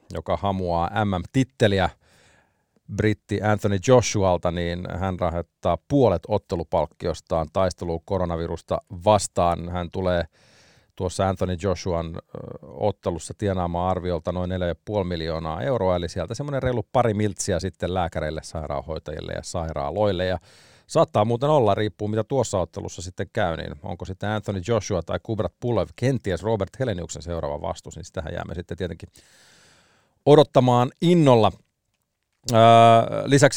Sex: male